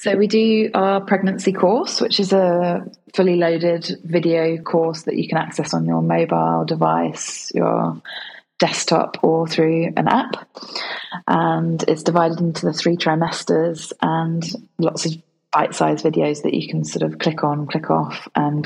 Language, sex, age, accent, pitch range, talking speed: English, female, 20-39, British, 155-175 Hz, 160 wpm